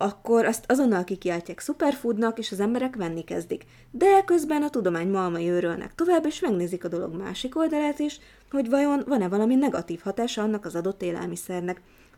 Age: 20-39